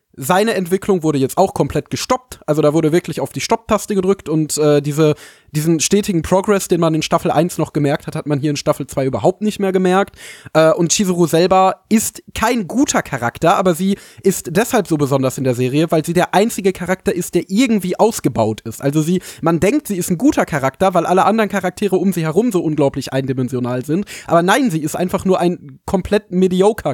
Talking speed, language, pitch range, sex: 210 wpm, German, 150-185 Hz, male